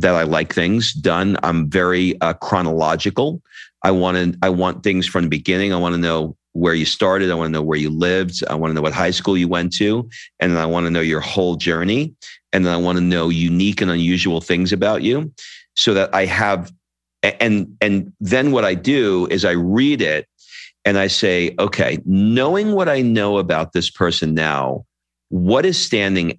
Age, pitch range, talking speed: 40-59, 90-125 Hz, 205 wpm